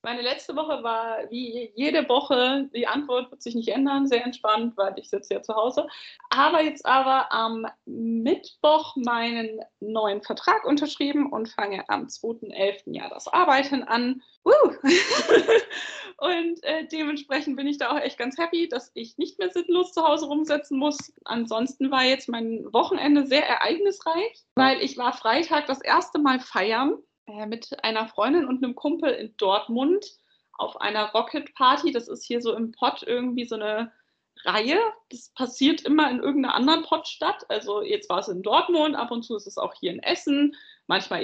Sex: female